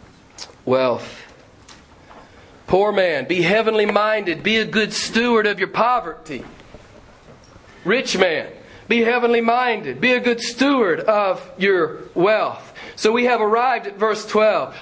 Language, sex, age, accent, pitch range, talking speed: English, male, 40-59, American, 185-230 Hz, 130 wpm